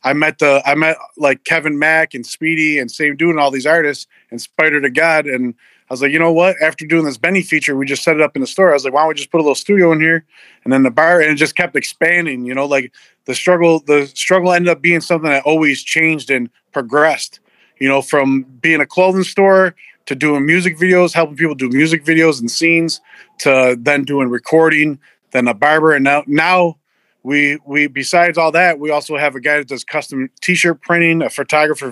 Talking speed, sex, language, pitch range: 230 wpm, male, English, 135-165 Hz